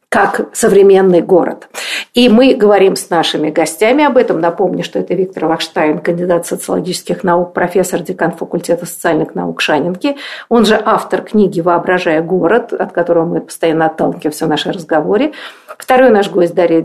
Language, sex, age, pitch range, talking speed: Russian, female, 50-69, 170-230 Hz, 155 wpm